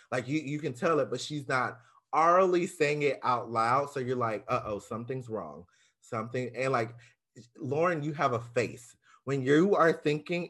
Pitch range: 125-165 Hz